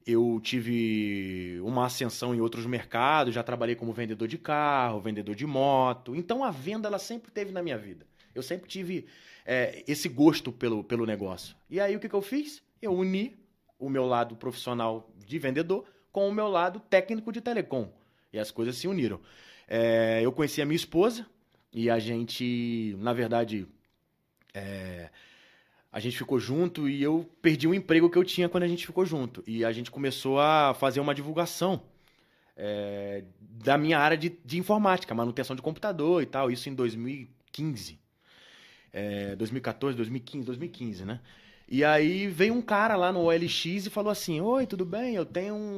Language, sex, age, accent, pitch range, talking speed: Portuguese, male, 20-39, Brazilian, 120-180 Hz, 170 wpm